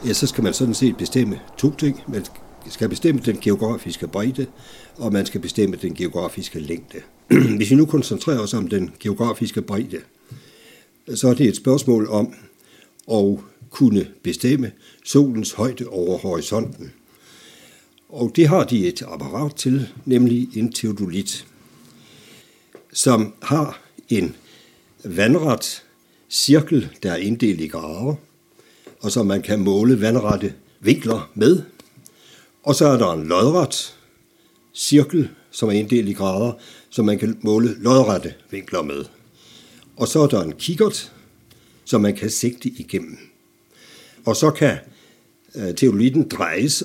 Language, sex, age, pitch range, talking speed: Danish, male, 60-79, 105-135 Hz, 140 wpm